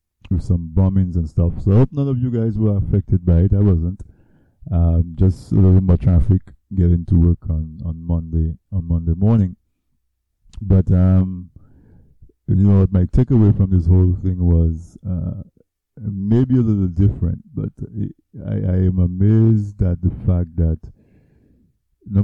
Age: 50-69